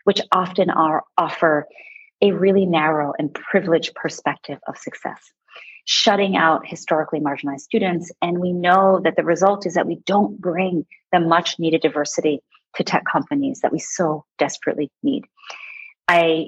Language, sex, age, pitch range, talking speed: English, female, 30-49, 155-200 Hz, 145 wpm